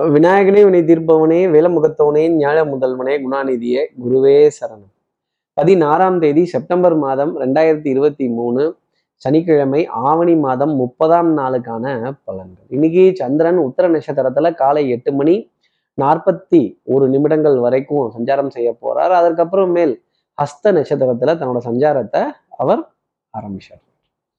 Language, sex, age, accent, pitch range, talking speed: Tamil, male, 20-39, native, 130-165 Hz, 105 wpm